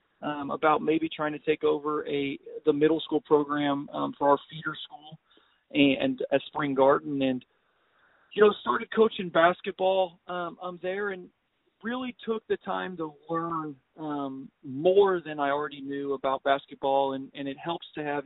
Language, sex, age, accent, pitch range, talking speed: English, male, 40-59, American, 140-160 Hz, 170 wpm